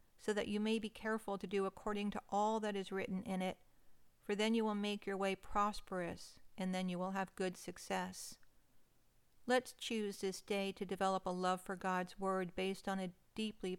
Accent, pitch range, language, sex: American, 185-210 Hz, English, female